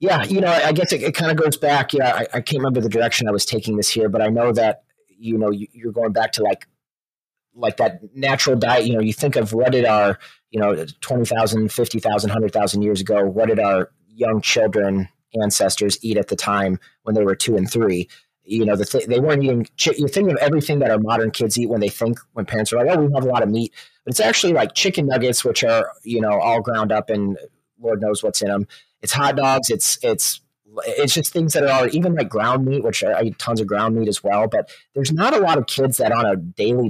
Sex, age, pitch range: male, 30-49, 105-135 Hz